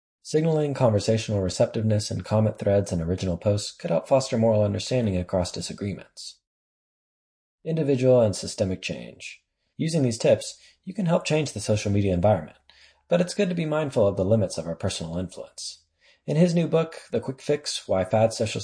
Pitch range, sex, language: 95-130 Hz, male, English